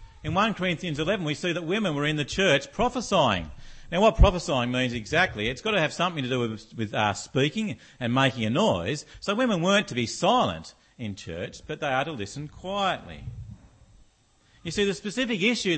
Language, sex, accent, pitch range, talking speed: English, male, Australian, 115-170 Hz, 195 wpm